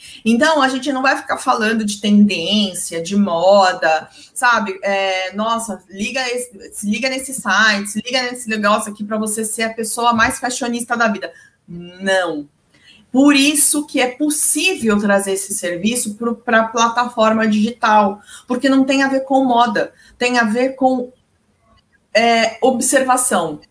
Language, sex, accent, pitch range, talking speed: Portuguese, female, Brazilian, 205-260 Hz, 140 wpm